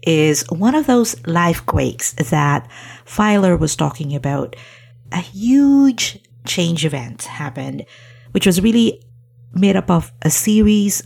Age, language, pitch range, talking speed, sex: 50-69, English, 125-195 Hz, 125 wpm, female